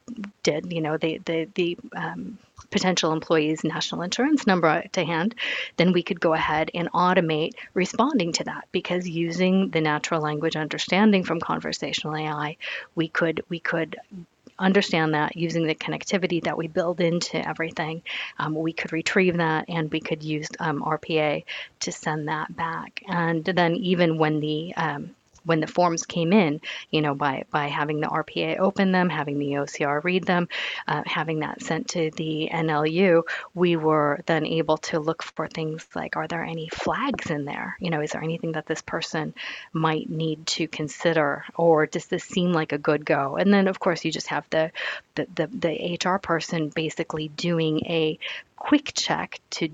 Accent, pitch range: American, 155-180 Hz